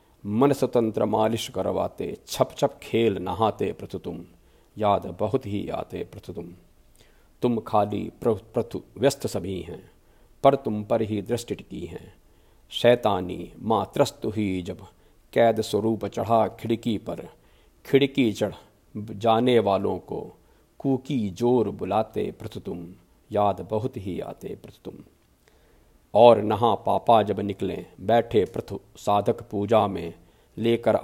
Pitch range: 100-115 Hz